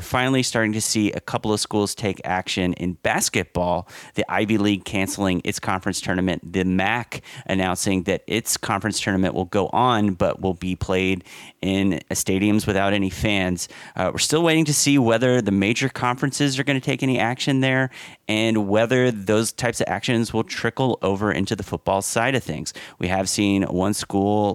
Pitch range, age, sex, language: 95-120 Hz, 30-49, male, English